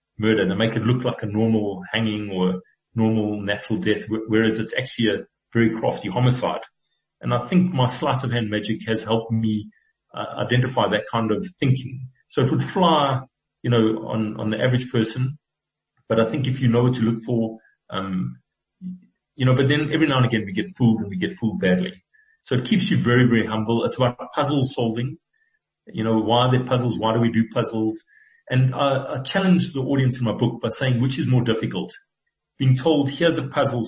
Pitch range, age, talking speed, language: 110-140 Hz, 40-59, 205 wpm, English